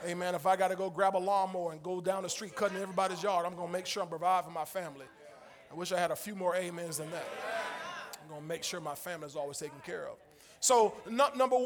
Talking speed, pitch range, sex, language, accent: 255 wpm, 180-225 Hz, male, English, American